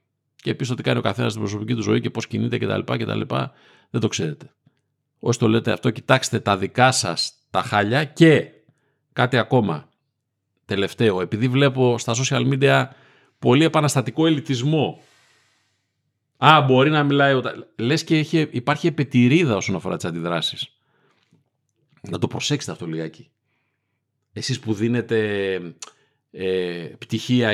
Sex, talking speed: male, 145 wpm